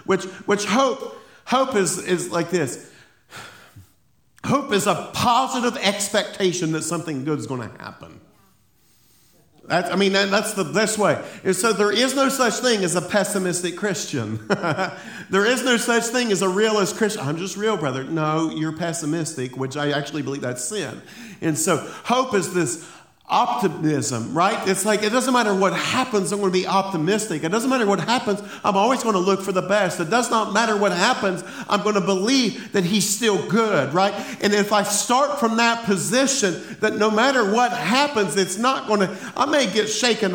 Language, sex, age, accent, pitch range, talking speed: English, male, 50-69, American, 190-230 Hz, 190 wpm